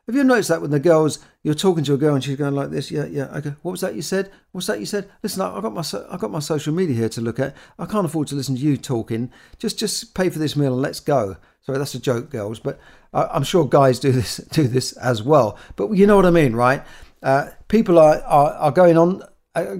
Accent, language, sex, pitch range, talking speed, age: British, English, male, 130-165 Hz, 275 wpm, 50-69